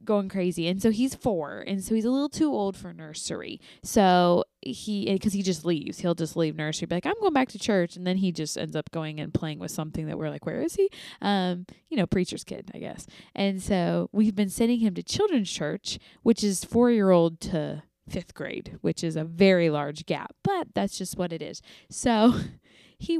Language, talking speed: English, 220 wpm